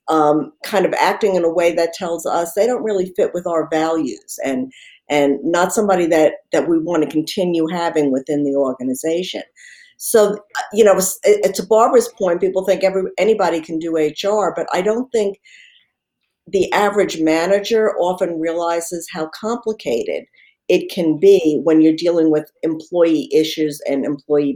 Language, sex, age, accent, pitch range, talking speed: English, female, 50-69, American, 160-220 Hz, 160 wpm